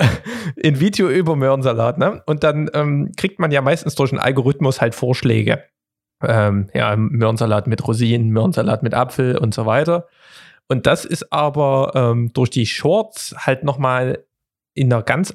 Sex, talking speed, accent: male, 155 wpm, German